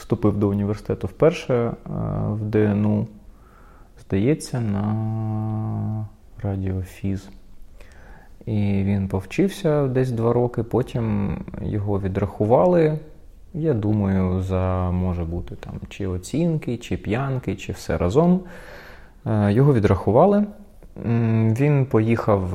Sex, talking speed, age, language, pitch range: male, 95 wpm, 20-39, Ukrainian, 95-130 Hz